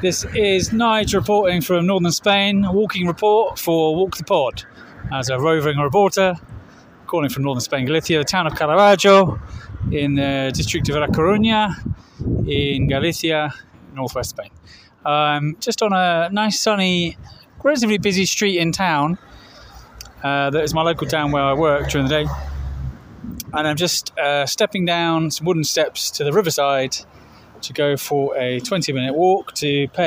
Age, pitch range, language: 20-39, 130-175 Hz, English